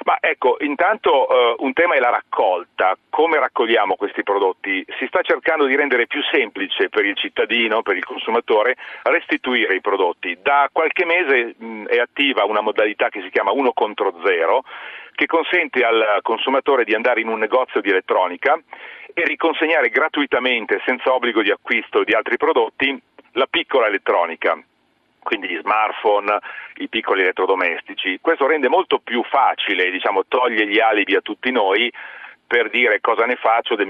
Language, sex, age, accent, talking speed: Italian, male, 40-59, native, 160 wpm